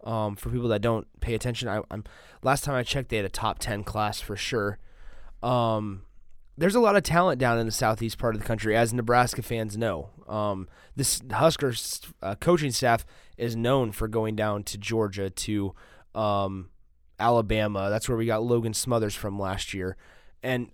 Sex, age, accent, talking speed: male, 20-39, American, 190 wpm